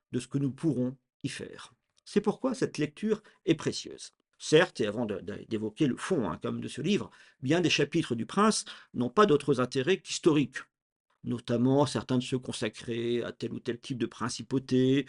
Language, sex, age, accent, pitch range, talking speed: French, male, 50-69, French, 125-165 Hz, 190 wpm